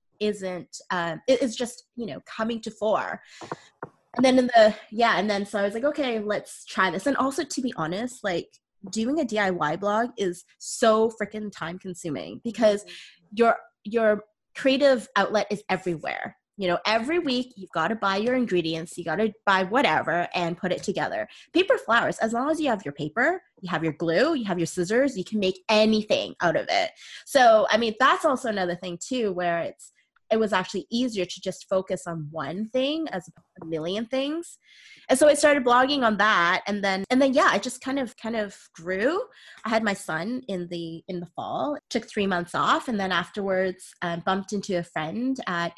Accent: American